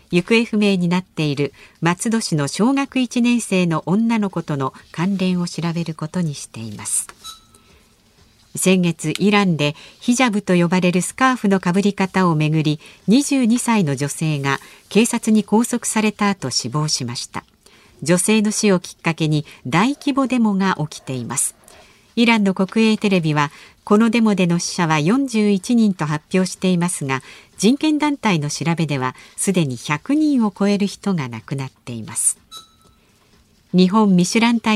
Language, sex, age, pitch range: Japanese, female, 50-69, 155-220 Hz